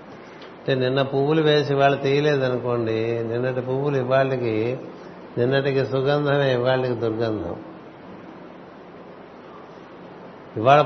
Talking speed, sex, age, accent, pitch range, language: 75 wpm, male, 60-79, native, 120-140 Hz, Telugu